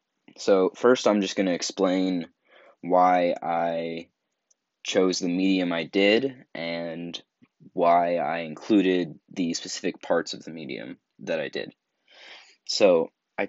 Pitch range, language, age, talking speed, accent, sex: 85-95 Hz, English, 20-39, 130 wpm, American, male